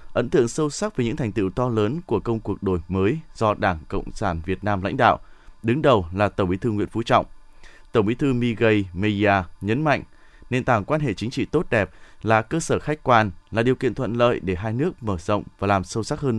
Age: 20-39